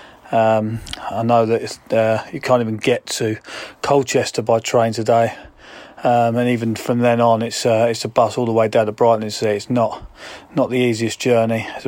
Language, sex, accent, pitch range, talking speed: English, male, British, 110-120 Hz, 200 wpm